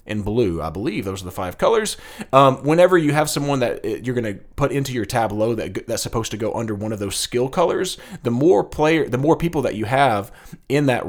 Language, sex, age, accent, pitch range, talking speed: English, male, 30-49, American, 100-135 Hz, 240 wpm